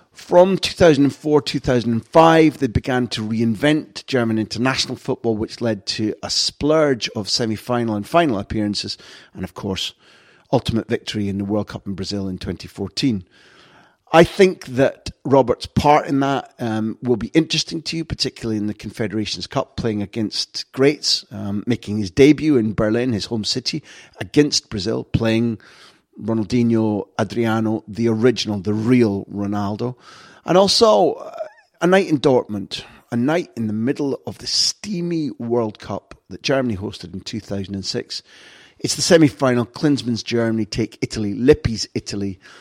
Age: 40-59